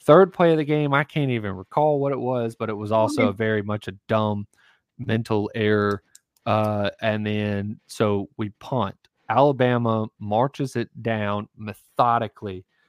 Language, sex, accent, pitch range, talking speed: English, male, American, 105-145 Hz, 155 wpm